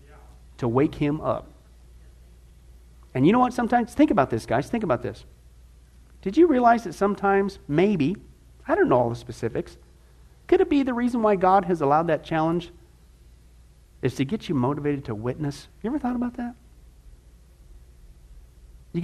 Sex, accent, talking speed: male, American, 165 wpm